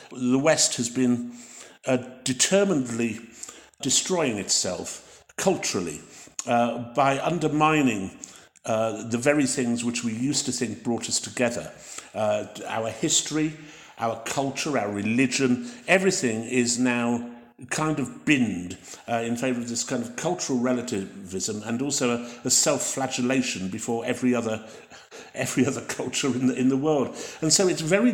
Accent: British